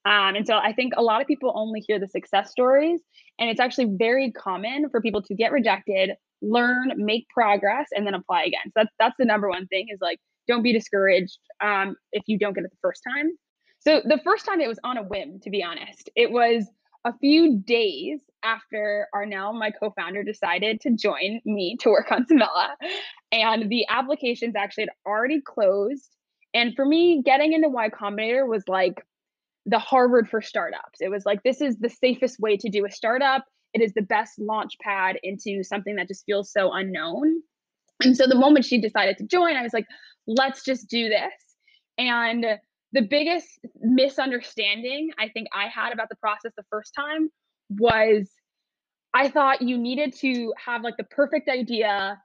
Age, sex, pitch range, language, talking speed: 20-39, female, 210-265 Hz, English, 190 wpm